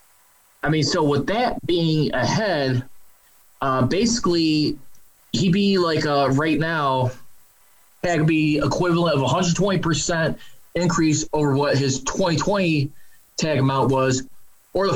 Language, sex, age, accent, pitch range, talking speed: English, male, 20-39, American, 135-170 Hz, 120 wpm